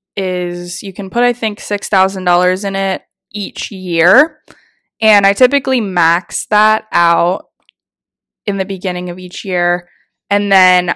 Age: 20-39